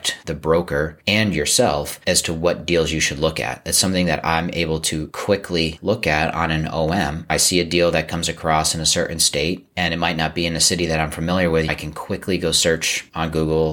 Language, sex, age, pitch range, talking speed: English, male, 30-49, 75-85 Hz, 235 wpm